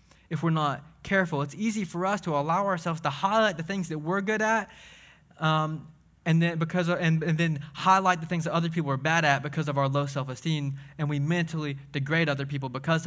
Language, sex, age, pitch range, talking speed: English, male, 20-39, 140-175 Hz, 225 wpm